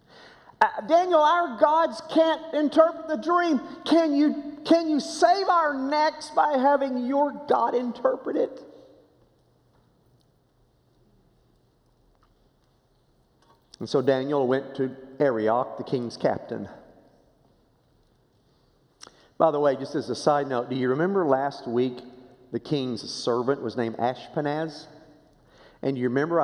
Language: English